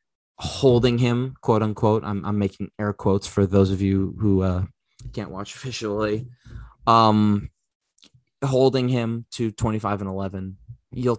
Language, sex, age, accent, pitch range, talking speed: English, male, 20-39, American, 100-115 Hz, 130 wpm